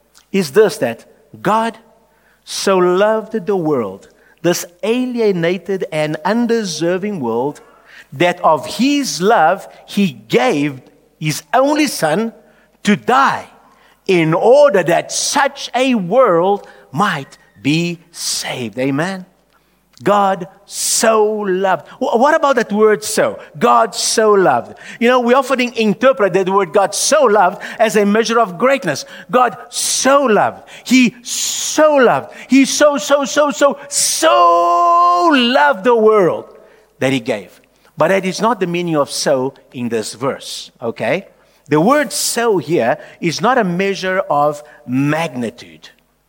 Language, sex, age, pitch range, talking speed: English, male, 50-69, 175-250 Hz, 130 wpm